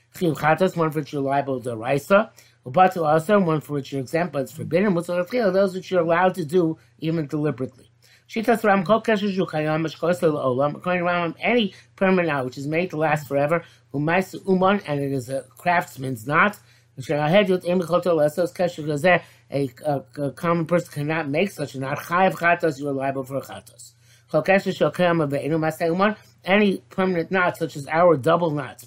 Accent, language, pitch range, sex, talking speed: American, English, 140-180 Hz, male, 130 wpm